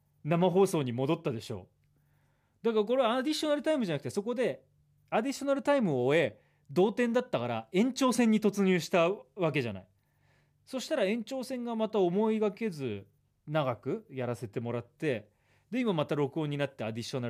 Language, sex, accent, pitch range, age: Japanese, male, native, 120-165 Hz, 30-49